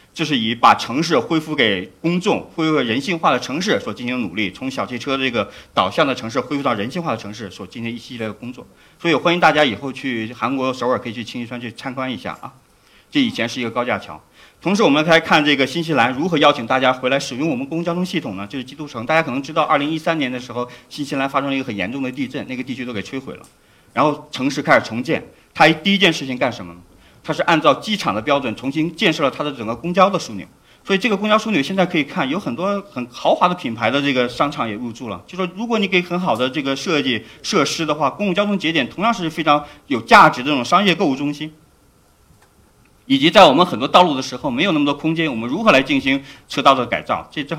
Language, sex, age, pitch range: Chinese, male, 50-69, 120-165 Hz